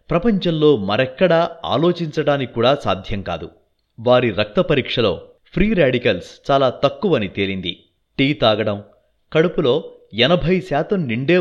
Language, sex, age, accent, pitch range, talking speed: Telugu, male, 30-49, native, 105-165 Hz, 100 wpm